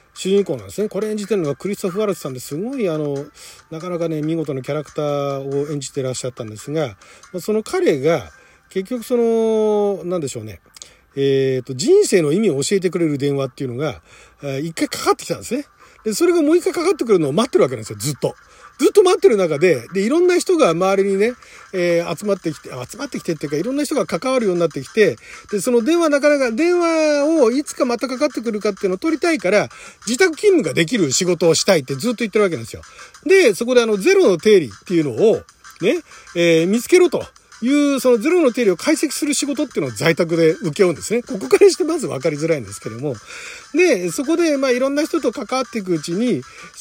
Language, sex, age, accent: Japanese, male, 40-59, native